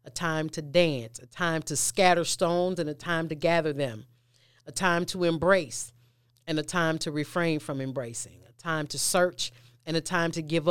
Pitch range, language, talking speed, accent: 135-170 Hz, English, 195 wpm, American